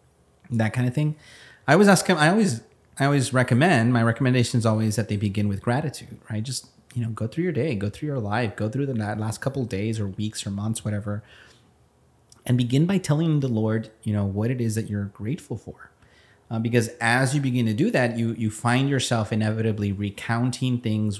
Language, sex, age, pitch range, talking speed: English, male, 30-49, 100-120 Hz, 210 wpm